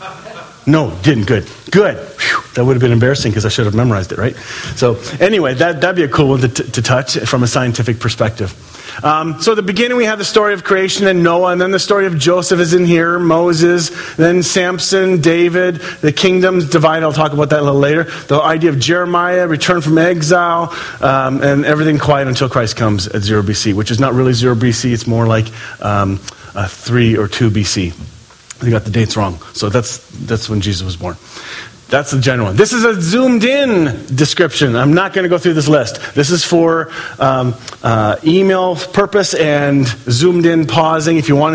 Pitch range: 120-175 Hz